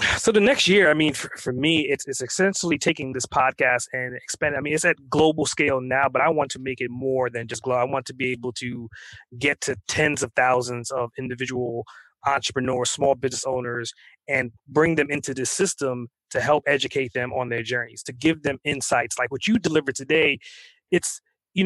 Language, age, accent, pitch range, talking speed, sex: English, 20-39, American, 130-165 Hz, 210 wpm, male